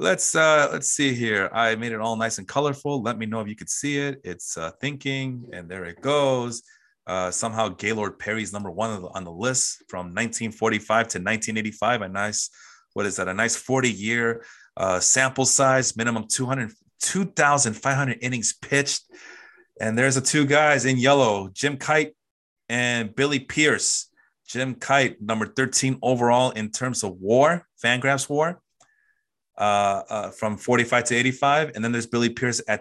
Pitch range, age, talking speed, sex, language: 105-135 Hz, 30-49, 165 wpm, male, English